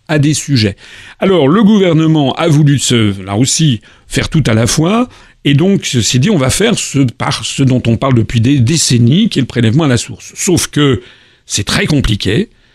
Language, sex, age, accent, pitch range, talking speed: French, male, 50-69, French, 120-180 Hz, 205 wpm